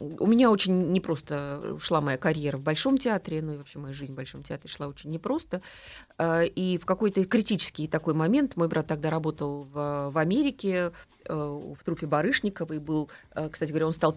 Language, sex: Russian, female